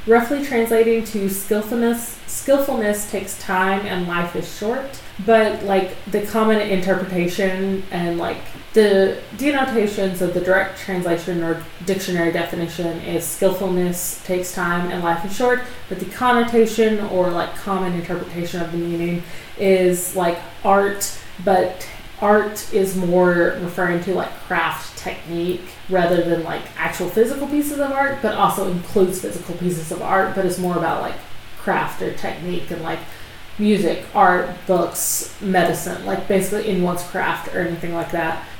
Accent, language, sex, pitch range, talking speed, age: American, English, female, 180-210 Hz, 145 wpm, 20-39